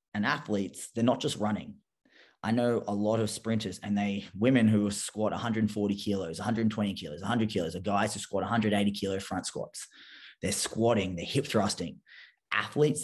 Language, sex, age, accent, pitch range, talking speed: English, male, 20-39, Australian, 95-115 Hz, 170 wpm